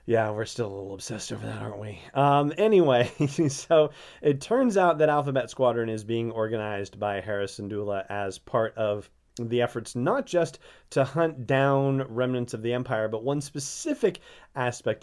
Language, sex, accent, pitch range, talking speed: English, male, American, 105-135 Hz, 175 wpm